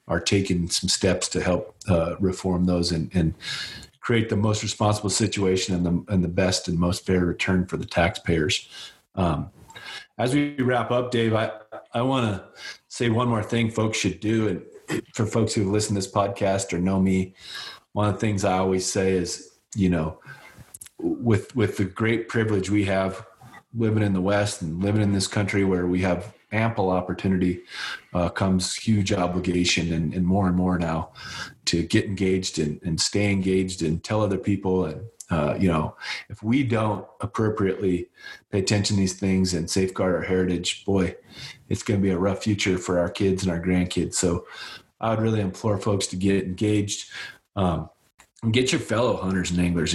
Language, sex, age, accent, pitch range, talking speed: English, male, 30-49, American, 90-105 Hz, 185 wpm